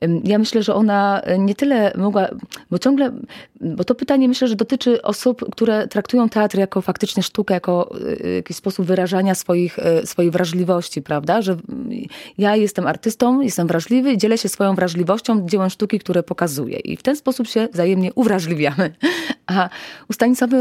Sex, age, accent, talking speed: female, 30-49, native, 155 wpm